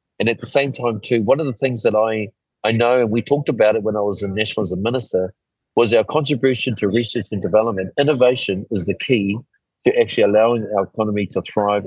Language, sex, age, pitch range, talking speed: English, male, 40-59, 100-120 Hz, 215 wpm